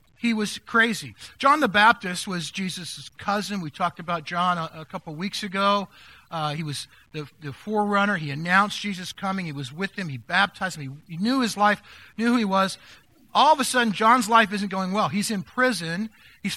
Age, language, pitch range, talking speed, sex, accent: 50-69, English, 190-250 Hz, 205 wpm, male, American